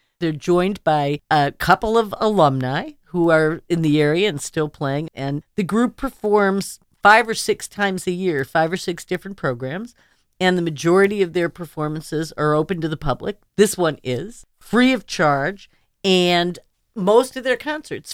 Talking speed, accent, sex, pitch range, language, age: 170 wpm, American, female, 155-205 Hz, English, 50-69